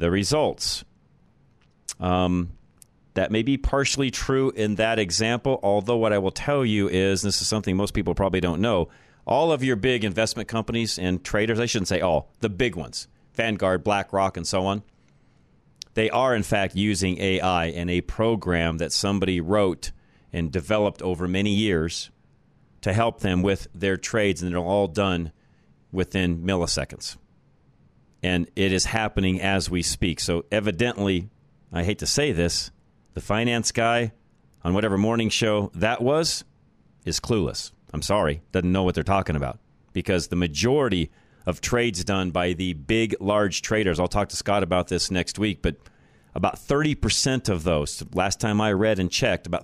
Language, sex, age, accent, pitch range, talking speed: English, male, 40-59, American, 90-110 Hz, 170 wpm